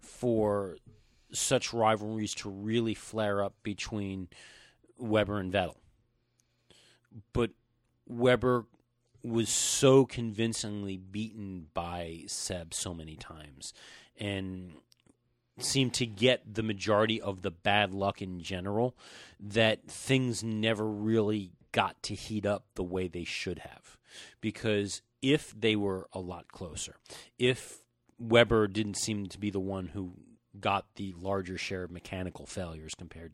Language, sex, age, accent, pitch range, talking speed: English, male, 40-59, American, 95-115 Hz, 130 wpm